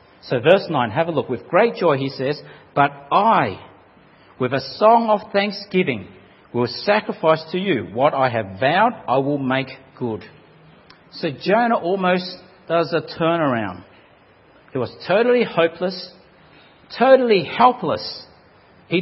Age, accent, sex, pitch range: 50-69, Australian, male, 140-215 Hz